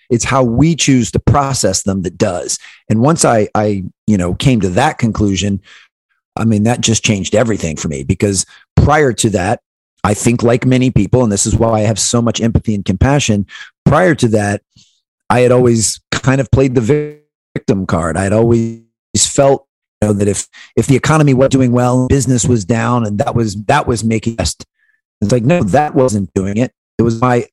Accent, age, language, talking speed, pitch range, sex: American, 40-59, English, 205 wpm, 105-130 Hz, male